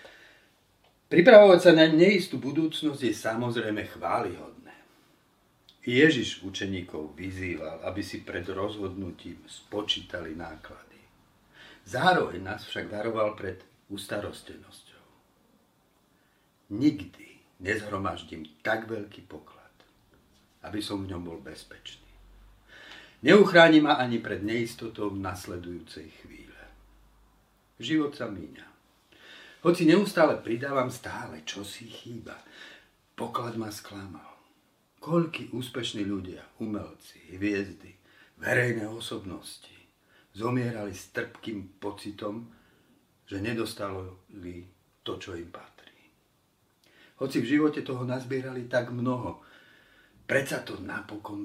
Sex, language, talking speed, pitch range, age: male, Slovak, 95 wpm, 95-125 Hz, 50-69